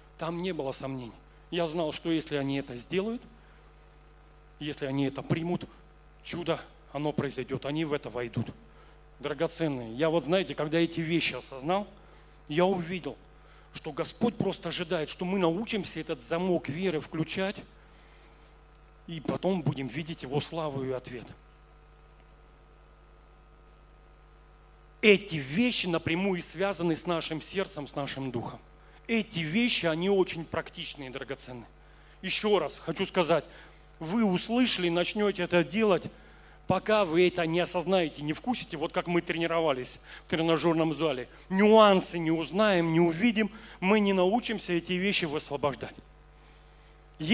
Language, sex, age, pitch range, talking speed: Russian, male, 40-59, 150-185 Hz, 130 wpm